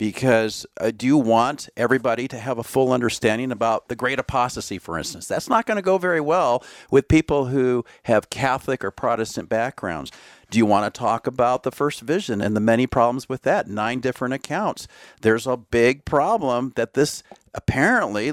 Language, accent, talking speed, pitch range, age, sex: English, American, 185 wpm, 115-145 Hz, 50-69, male